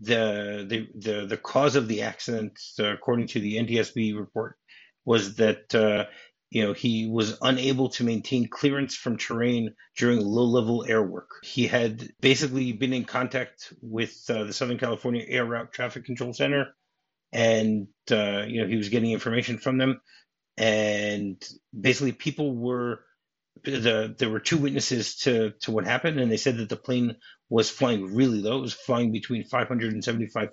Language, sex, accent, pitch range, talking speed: English, male, American, 110-125 Hz, 165 wpm